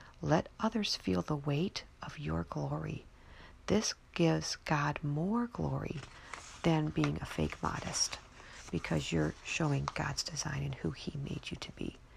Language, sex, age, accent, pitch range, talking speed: English, female, 40-59, American, 145-185 Hz, 150 wpm